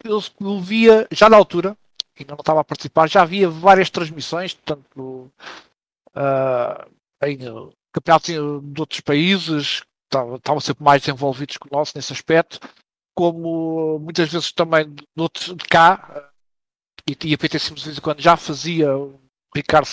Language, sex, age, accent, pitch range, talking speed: Portuguese, male, 50-69, Portuguese, 150-180 Hz, 150 wpm